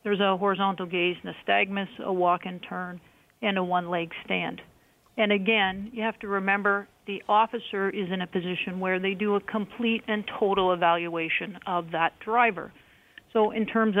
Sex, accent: female, American